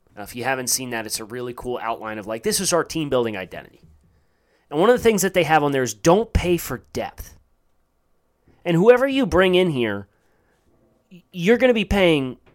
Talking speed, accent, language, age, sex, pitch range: 210 wpm, American, English, 30-49, male, 110-165 Hz